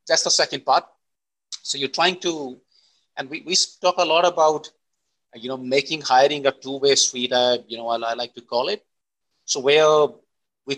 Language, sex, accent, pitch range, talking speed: English, male, Indian, 130-165 Hz, 190 wpm